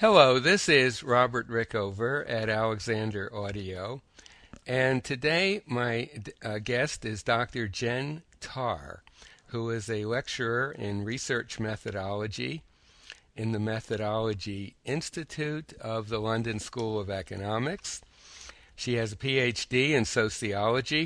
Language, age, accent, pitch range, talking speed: English, 60-79, American, 100-125 Hz, 115 wpm